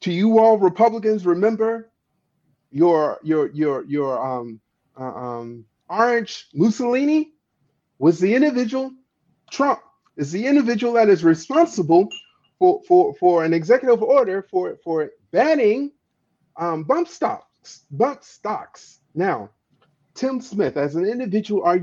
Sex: male